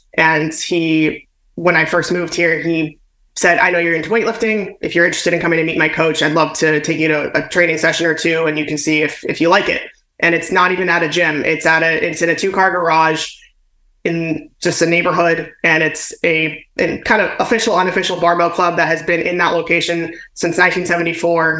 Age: 20-39